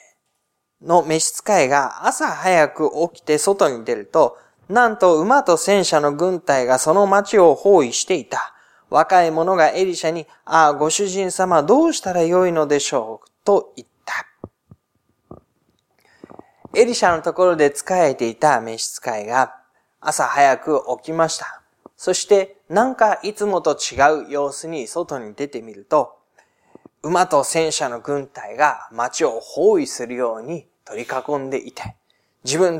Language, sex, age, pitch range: Japanese, male, 20-39, 150-195 Hz